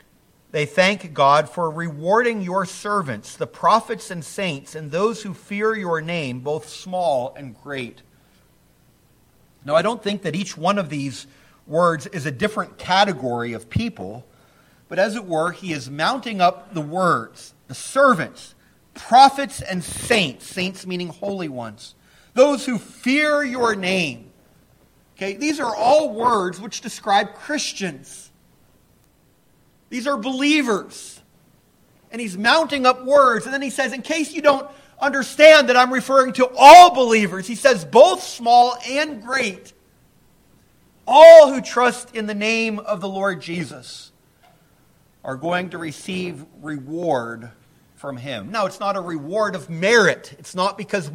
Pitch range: 160-240 Hz